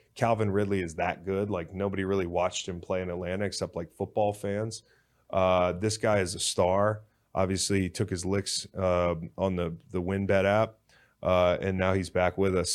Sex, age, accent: male, 20-39, American